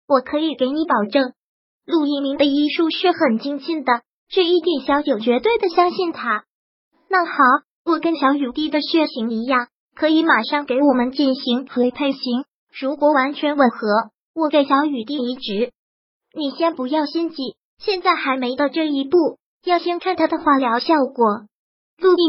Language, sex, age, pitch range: Chinese, male, 20-39, 260-325 Hz